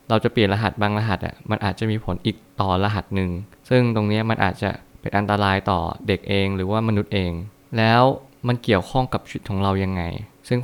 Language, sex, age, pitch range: Thai, male, 20-39, 100-115 Hz